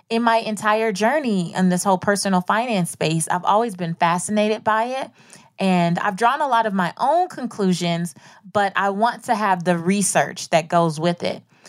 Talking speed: 185 wpm